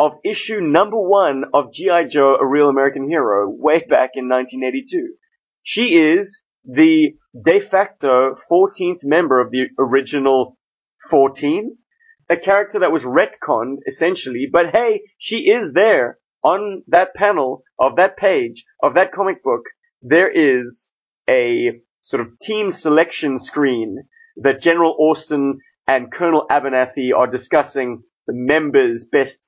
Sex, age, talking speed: male, 30-49, 135 wpm